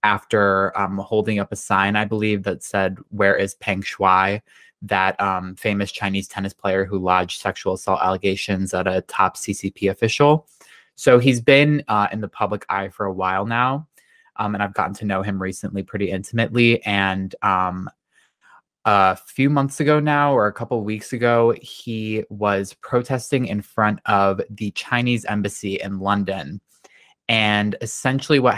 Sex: male